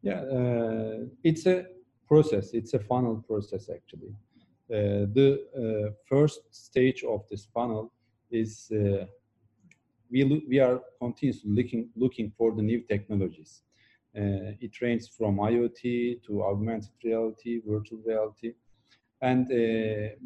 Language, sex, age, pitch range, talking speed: English, male, 40-59, 105-120 Hz, 125 wpm